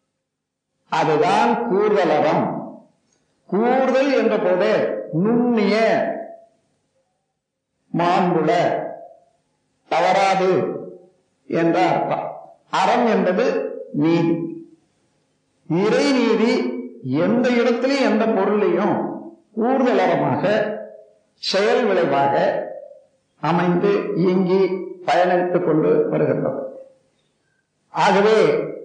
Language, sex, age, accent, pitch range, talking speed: Tamil, male, 50-69, native, 185-270 Hz, 60 wpm